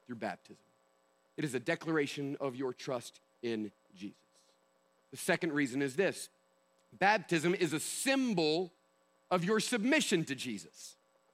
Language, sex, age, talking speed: English, male, 40-59, 125 wpm